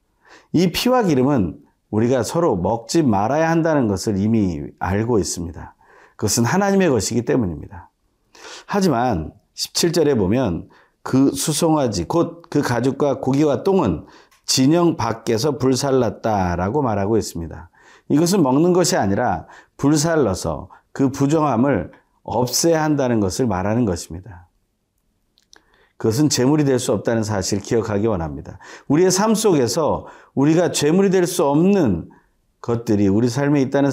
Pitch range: 105-160 Hz